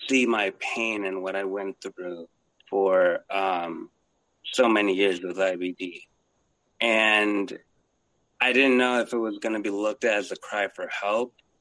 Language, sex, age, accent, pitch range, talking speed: English, male, 30-49, American, 95-115 Hz, 165 wpm